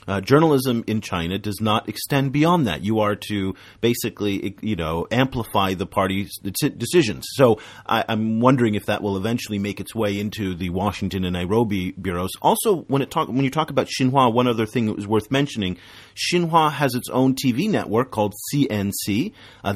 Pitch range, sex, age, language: 100-125 Hz, male, 40-59, English